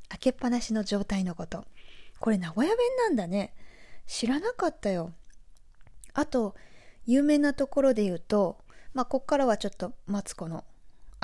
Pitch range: 190-270 Hz